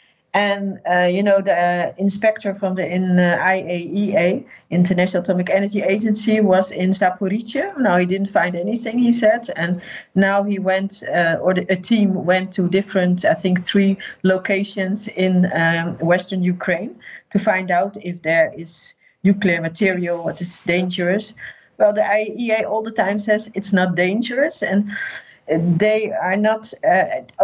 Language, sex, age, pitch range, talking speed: English, female, 40-59, 180-215 Hz, 155 wpm